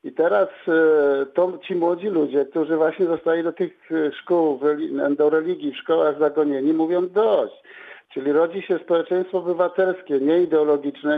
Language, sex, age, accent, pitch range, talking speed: Polish, male, 50-69, native, 150-175 Hz, 140 wpm